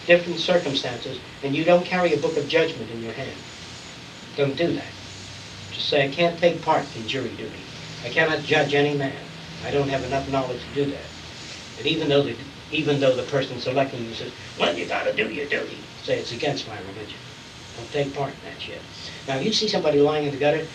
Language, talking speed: English, 215 wpm